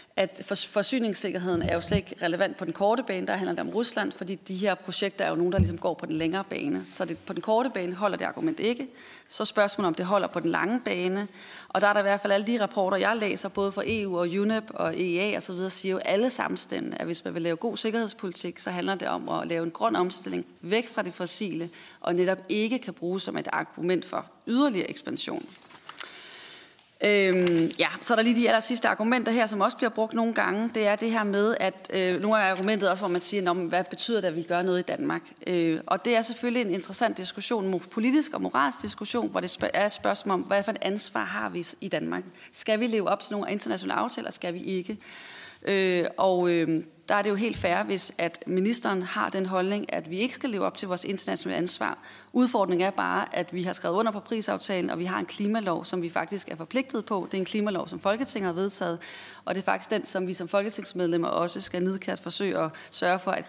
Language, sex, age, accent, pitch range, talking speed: Danish, female, 30-49, native, 180-220 Hz, 235 wpm